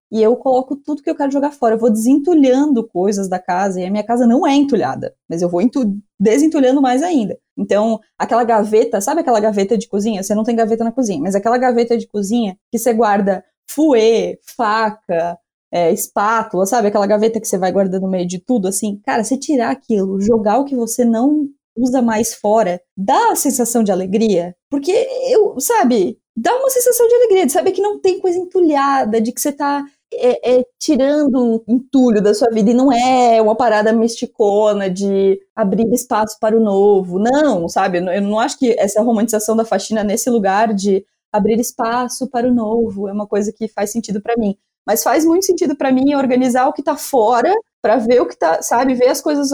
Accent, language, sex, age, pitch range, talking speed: Brazilian, Portuguese, female, 20-39, 205-265 Hz, 205 wpm